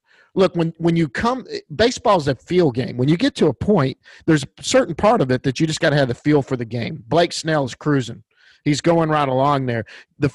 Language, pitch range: English, 135-165 Hz